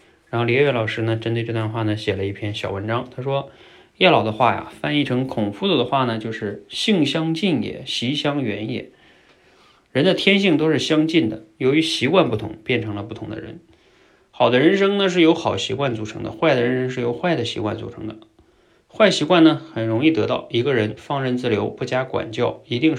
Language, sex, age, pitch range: Chinese, male, 20-39, 115-155 Hz